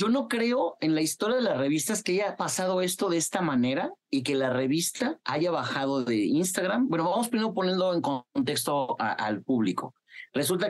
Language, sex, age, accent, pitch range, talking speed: Spanish, male, 40-59, Mexican, 130-175 Hz, 190 wpm